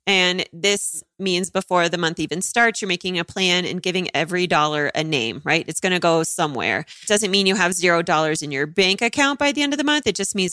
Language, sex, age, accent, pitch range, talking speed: English, female, 30-49, American, 165-205 Hz, 250 wpm